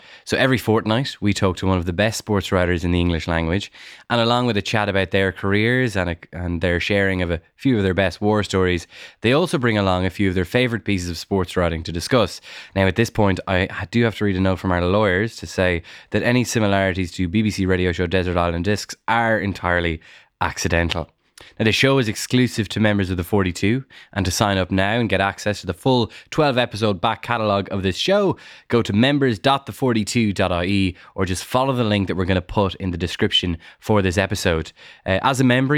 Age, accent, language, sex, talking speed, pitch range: 10-29, Irish, English, male, 220 wpm, 95-115 Hz